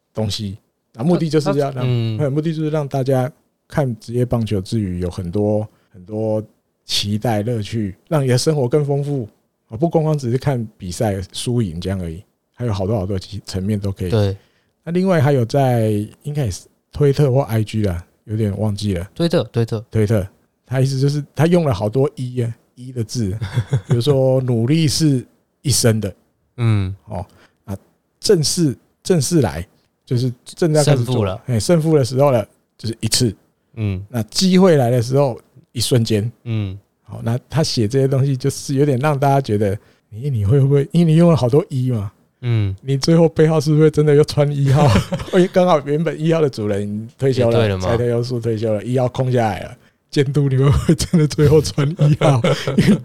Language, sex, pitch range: Chinese, male, 110-150 Hz